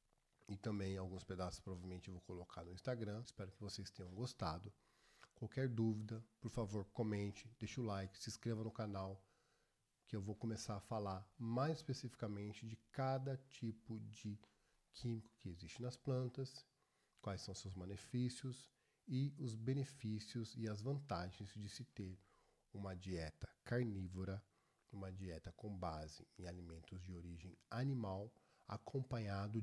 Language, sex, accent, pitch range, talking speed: Portuguese, male, Brazilian, 95-120 Hz, 140 wpm